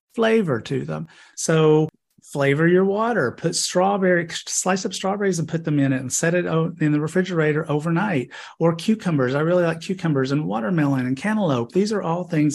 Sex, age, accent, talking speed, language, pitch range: male, 40-59, American, 180 wpm, English, 140-170 Hz